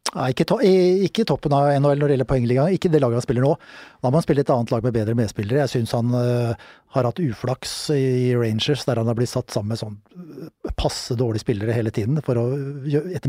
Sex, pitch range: male, 120-150 Hz